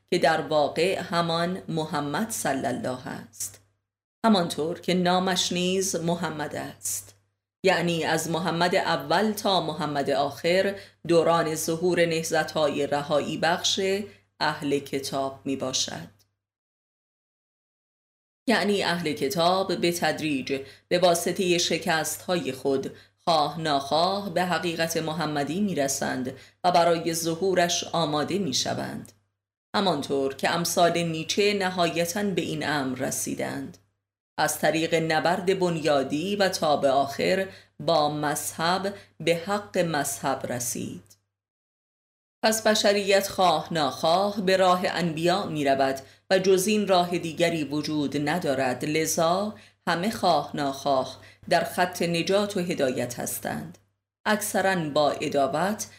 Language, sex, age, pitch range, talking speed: Persian, female, 30-49, 140-180 Hz, 110 wpm